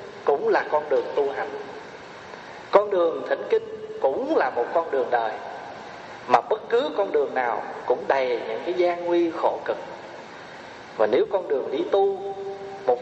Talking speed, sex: 170 wpm, male